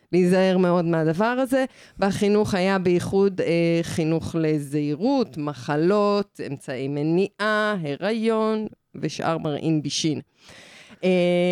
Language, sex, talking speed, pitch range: Hebrew, female, 95 wpm, 165-205 Hz